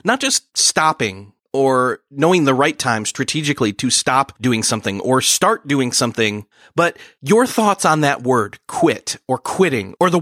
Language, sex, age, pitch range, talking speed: English, male, 30-49, 120-160 Hz, 165 wpm